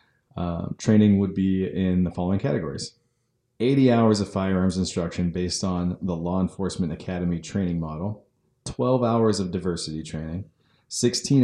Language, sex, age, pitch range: English, male, 30-49, 90-105 Hz